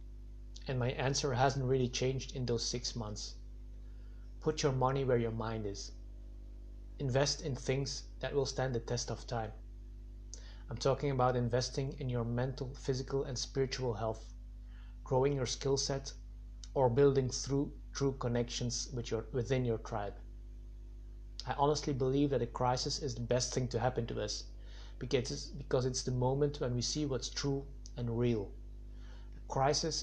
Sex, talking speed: male, 150 wpm